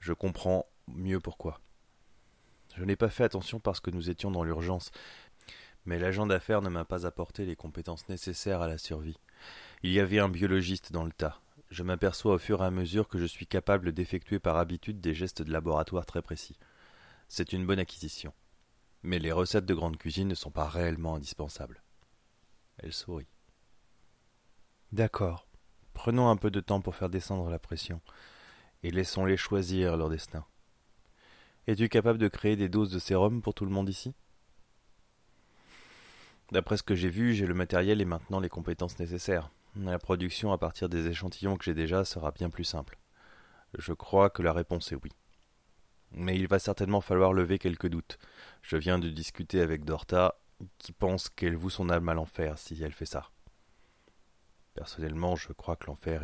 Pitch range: 85-100 Hz